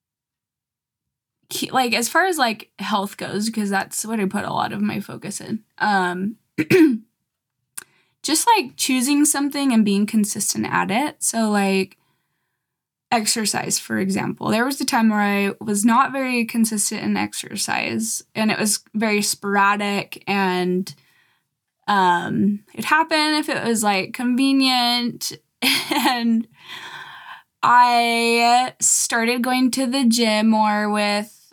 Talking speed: 130 wpm